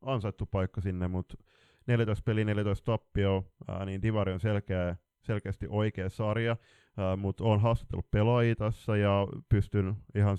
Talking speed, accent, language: 140 wpm, native, Finnish